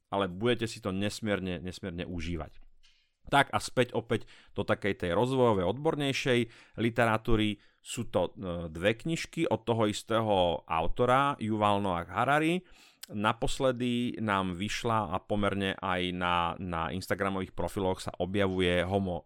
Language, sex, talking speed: Slovak, male, 130 wpm